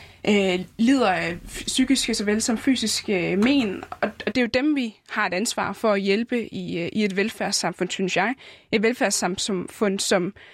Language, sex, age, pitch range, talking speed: Danish, female, 20-39, 205-245 Hz, 150 wpm